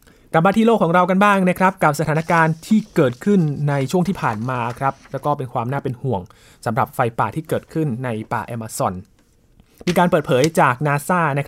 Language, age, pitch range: Thai, 20-39, 120-160 Hz